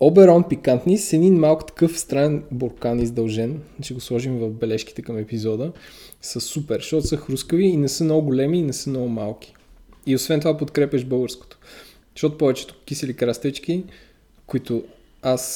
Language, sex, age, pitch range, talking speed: Bulgarian, male, 20-39, 120-155 Hz, 160 wpm